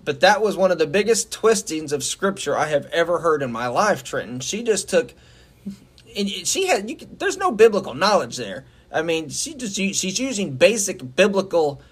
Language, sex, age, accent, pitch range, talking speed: English, male, 30-49, American, 145-210 Hz, 205 wpm